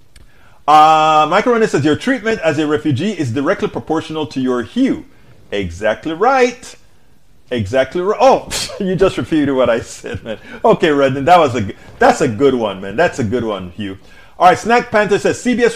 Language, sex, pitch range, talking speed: English, male, 135-190 Hz, 185 wpm